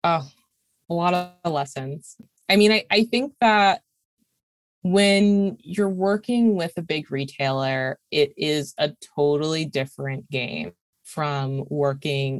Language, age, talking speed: English, 20-39, 125 wpm